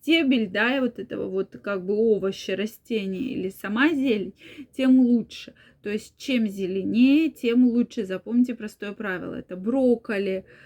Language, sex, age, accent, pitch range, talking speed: Russian, female, 20-39, native, 200-245 Hz, 145 wpm